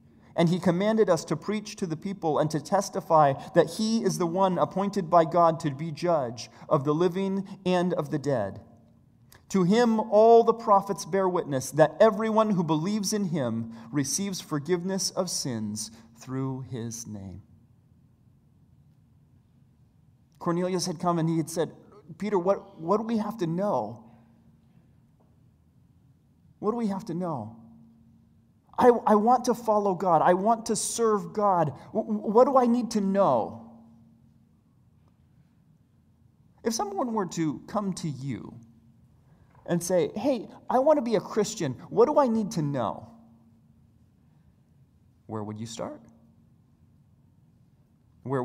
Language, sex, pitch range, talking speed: English, male, 125-200 Hz, 140 wpm